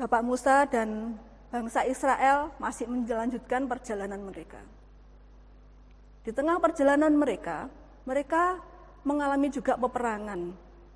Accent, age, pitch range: native, 30-49, 225-310 Hz